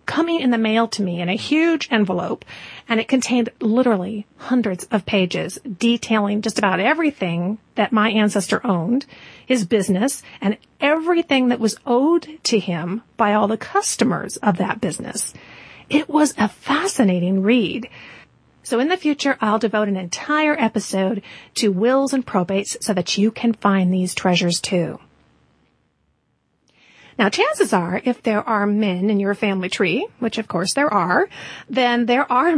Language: English